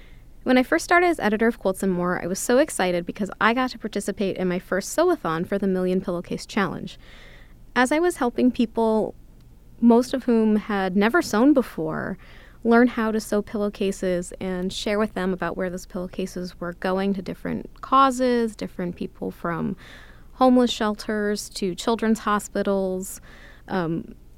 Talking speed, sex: 165 wpm, female